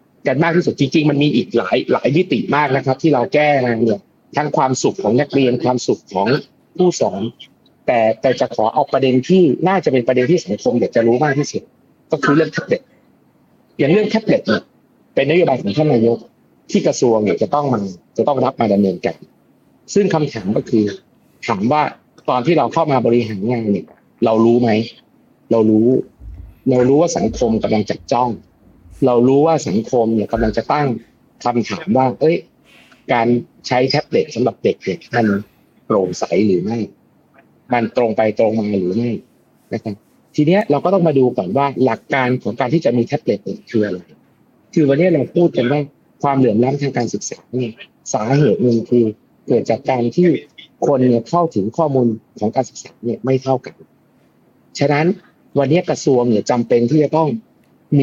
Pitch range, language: 115-145 Hz, Thai